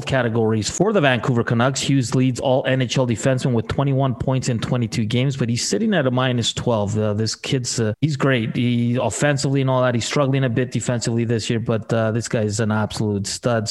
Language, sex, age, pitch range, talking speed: English, male, 30-49, 115-140 Hz, 215 wpm